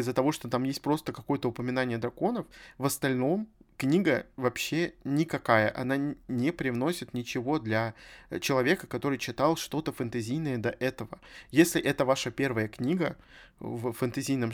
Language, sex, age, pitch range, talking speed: Russian, male, 20-39, 125-145 Hz, 135 wpm